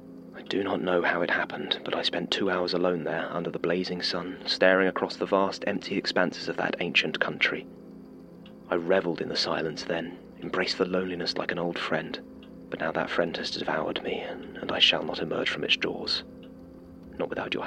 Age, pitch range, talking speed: 30-49, 85-90 Hz, 195 wpm